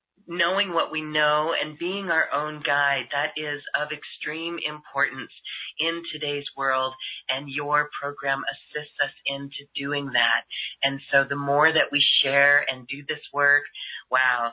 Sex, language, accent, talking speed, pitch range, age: female, English, American, 155 wpm, 135-150 Hz, 40-59